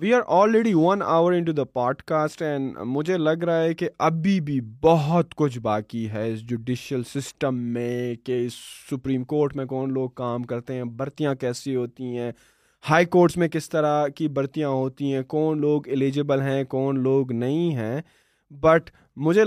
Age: 20-39